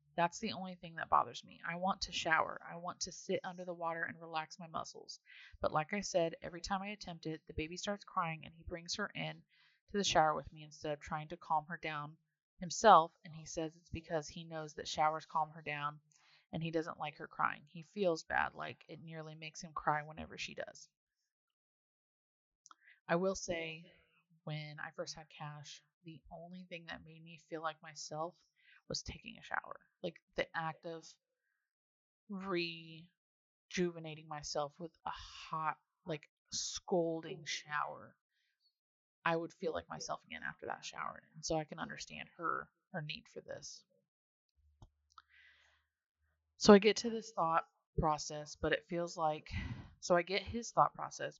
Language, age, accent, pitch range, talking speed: English, 30-49, American, 155-175 Hz, 175 wpm